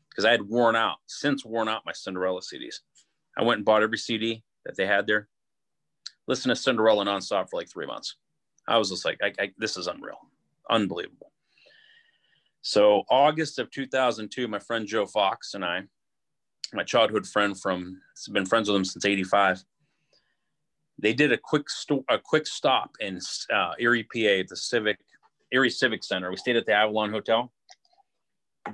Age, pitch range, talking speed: 30-49, 100-125 Hz, 175 wpm